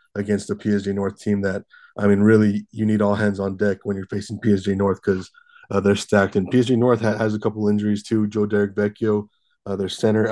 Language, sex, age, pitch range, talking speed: English, male, 20-39, 100-110 Hz, 225 wpm